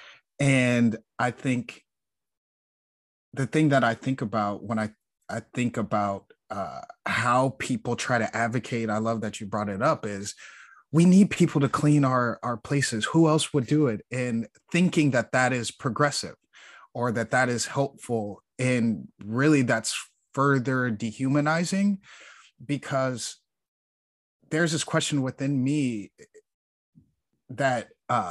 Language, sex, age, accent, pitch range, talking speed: English, male, 30-49, American, 110-135 Hz, 135 wpm